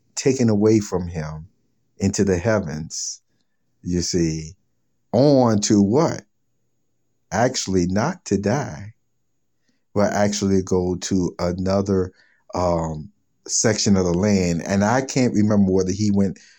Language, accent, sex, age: English, American, male, 50-69